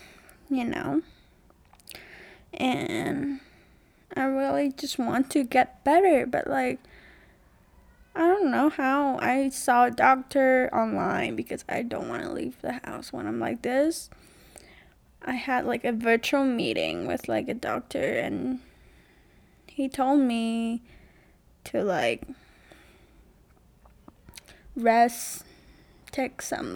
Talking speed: 115 wpm